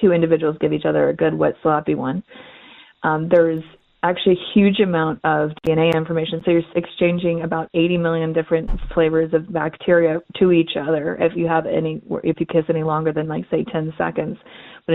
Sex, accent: female, American